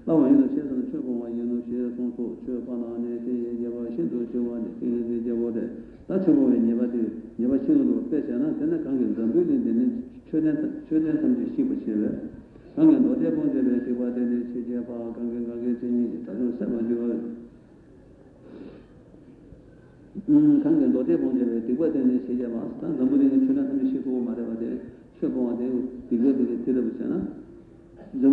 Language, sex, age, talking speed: Italian, male, 60-79, 45 wpm